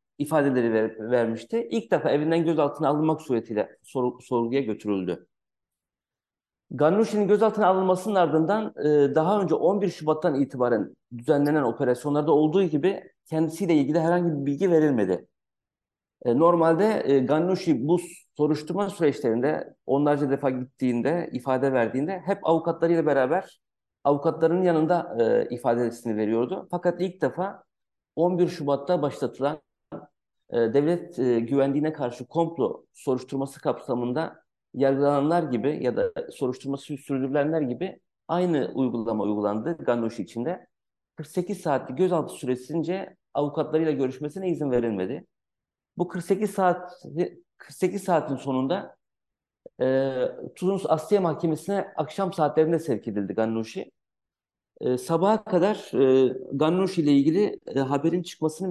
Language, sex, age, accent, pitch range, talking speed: Turkish, male, 50-69, native, 135-175 Hz, 110 wpm